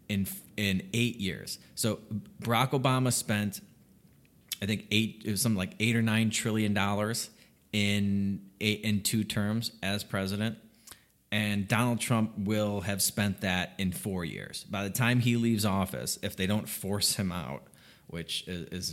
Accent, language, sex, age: American, English, male, 30-49